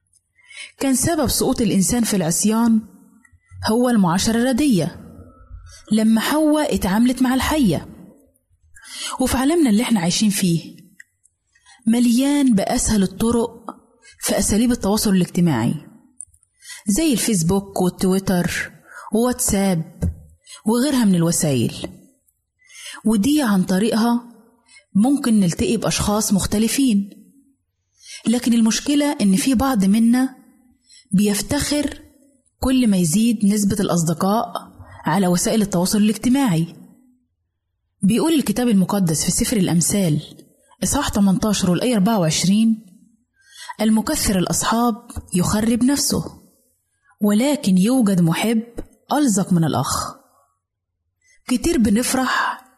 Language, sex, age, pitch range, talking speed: Arabic, female, 30-49, 185-245 Hz, 90 wpm